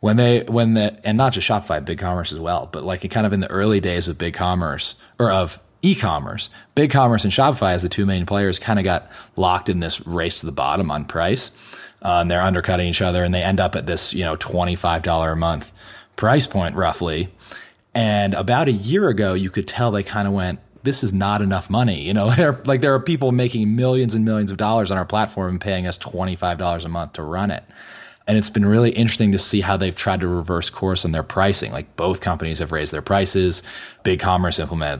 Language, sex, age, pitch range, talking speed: English, male, 30-49, 90-105 Hz, 235 wpm